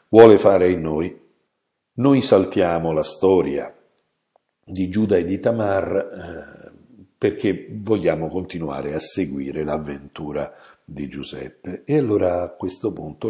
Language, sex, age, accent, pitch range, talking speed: Italian, male, 60-79, native, 85-115 Hz, 120 wpm